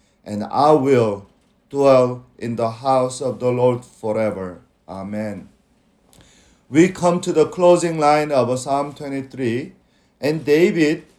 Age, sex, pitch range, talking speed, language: 50-69, male, 130-175 Hz, 125 wpm, English